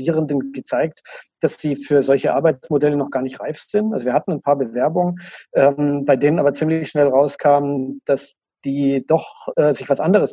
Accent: German